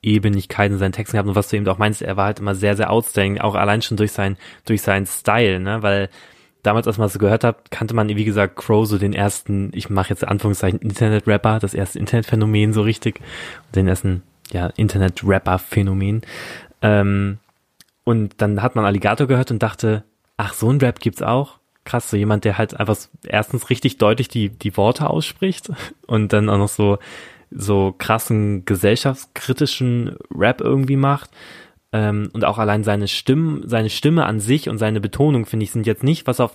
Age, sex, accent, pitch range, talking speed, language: 20-39, male, German, 100-120 Hz, 190 wpm, German